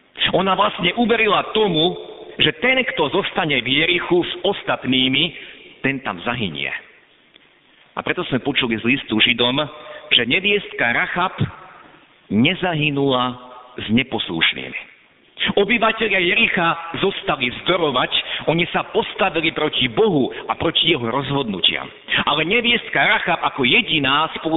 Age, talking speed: 50-69, 115 wpm